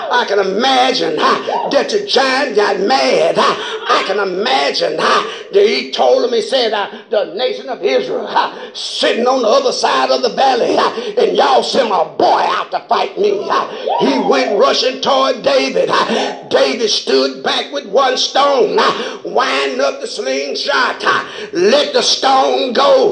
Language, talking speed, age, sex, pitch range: English, 175 wpm, 50-69, male, 290-465 Hz